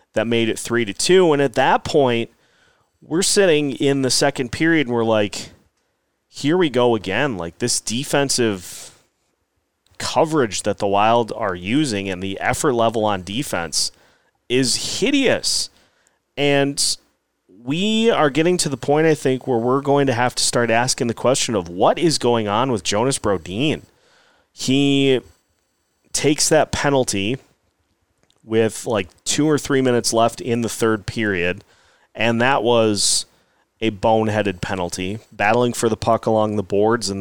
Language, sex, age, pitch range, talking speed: English, male, 30-49, 110-140 Hz, 155 wpm